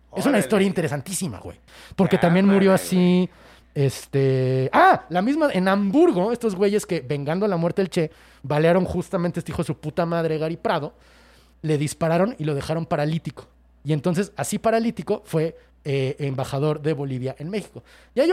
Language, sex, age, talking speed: Spanish, male, 30-49, 175 wpm